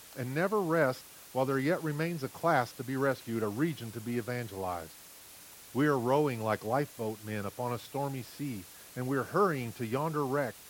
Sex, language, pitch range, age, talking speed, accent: male, English, 110-145 Hz, 40-59, 190 wpm, American